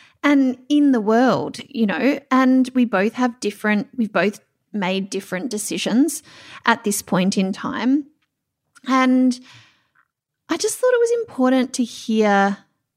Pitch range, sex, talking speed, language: 205-275 Hz, female, 140 wpm, English